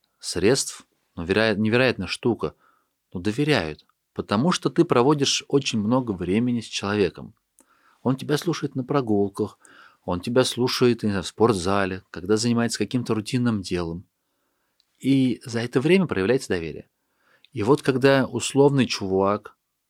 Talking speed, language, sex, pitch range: 125 wpm, Russian, male, 95-130 Hz